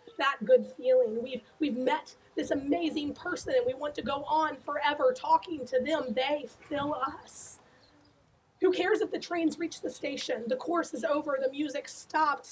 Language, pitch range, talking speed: English, 255-315 Hz, 175 wpm